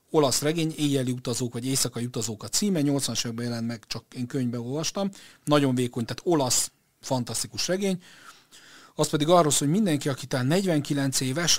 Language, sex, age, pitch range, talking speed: Hungarian, male, 40-59, 120-150 Hz, 170 wpm